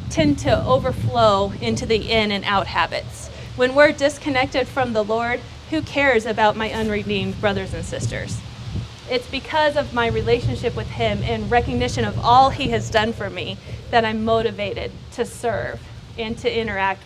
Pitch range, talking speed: 210-285 Hz, 165 wpm